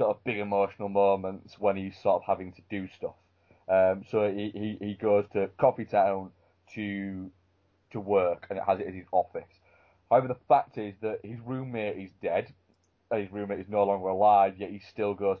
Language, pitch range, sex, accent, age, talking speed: English, 95-110 Hz, male, British, 20-39, 205 wpm